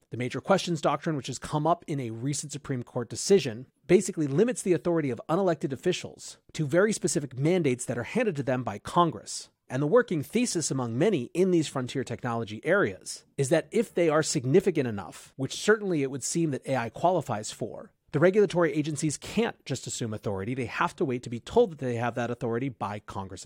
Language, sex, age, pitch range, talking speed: English, male, 30-49, 120-175 Hz, 205 wpm